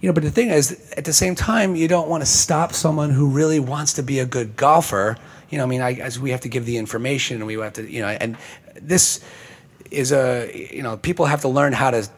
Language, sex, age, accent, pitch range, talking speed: English, male, 30-49, American, 115-155 Hz, 250 wpm